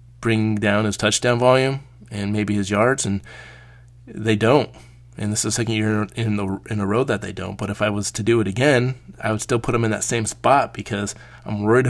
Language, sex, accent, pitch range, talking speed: English, male, American, 105-120 Hz, 230 wpm